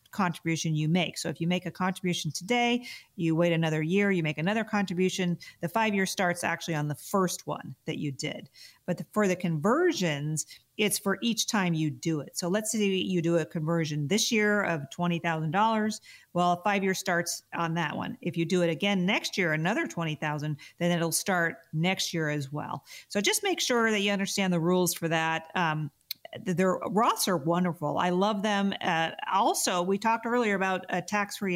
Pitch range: 165-205 Hz